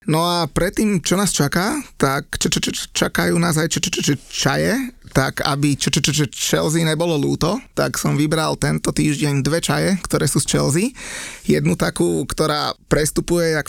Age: 20-39